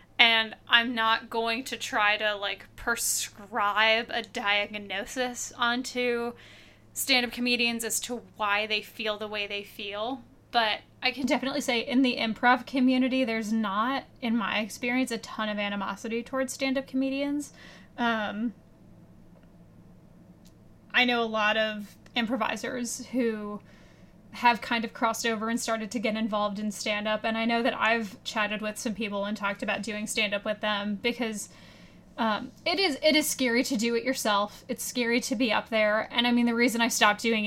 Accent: American